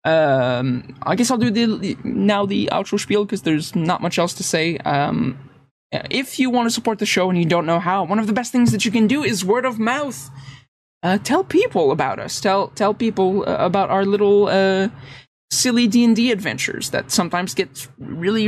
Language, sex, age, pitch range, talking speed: English, male, 20-39, 155-210 Hz, 205 wpm